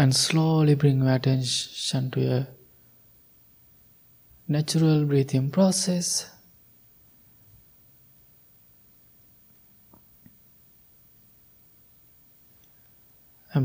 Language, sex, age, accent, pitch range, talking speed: English, male, 20-39, Indian, 120-155 Hz, 50 wpm